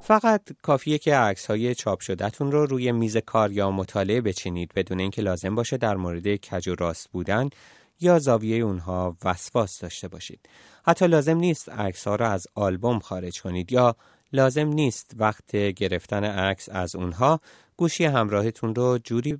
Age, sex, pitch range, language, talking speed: 30-49, male, 95-140 Hz, Persian, 160 wpm